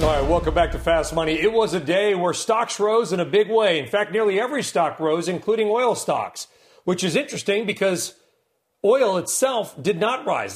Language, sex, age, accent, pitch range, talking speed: English, male, 40-59, American, 155-200 Hz, 205 wpm